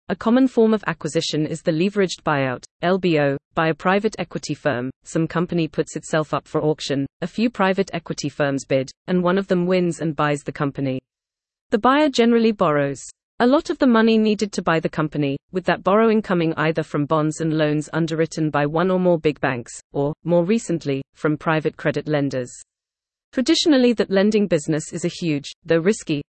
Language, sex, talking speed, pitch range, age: English, female, 190 wpm, 150-185 Hz, 30-49